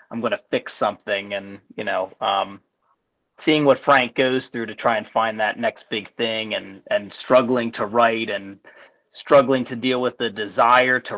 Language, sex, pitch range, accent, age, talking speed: English, male, 110-130 Hz, American, 30-49, 190 wpm